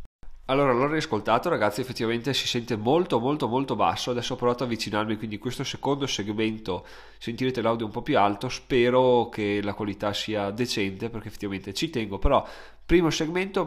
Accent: native